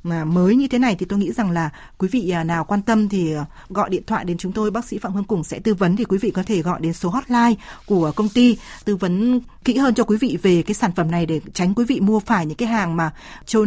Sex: female